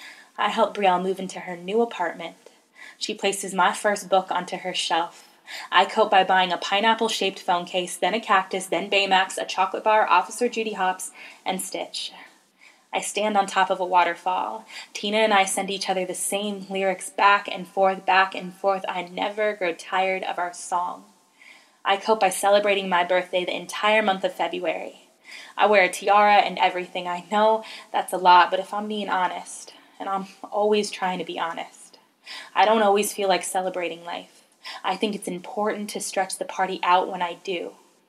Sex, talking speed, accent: female, 185 wpm, American